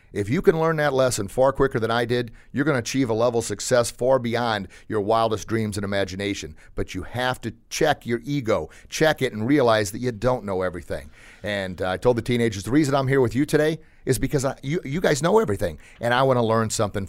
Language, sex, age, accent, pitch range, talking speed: English, male, 40-59, American, 105-140 Hz, 240 wpm